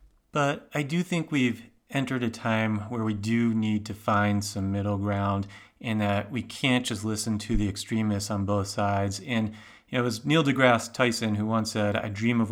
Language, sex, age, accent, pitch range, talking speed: English, male, 30-49, American, 105-120 Hz, 195 wpm